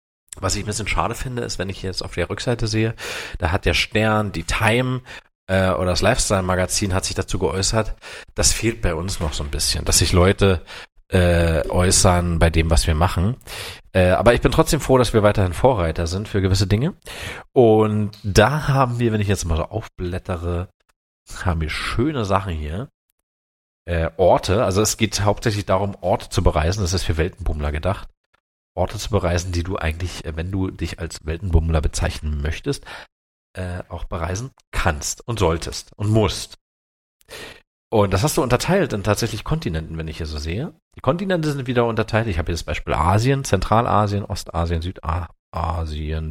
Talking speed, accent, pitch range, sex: 180 wpm, German, 85-110 Hz, male